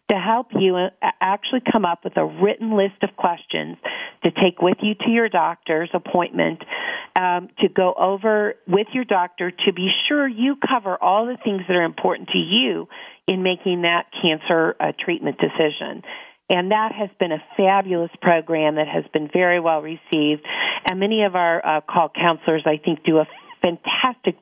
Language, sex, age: English, female, 40-59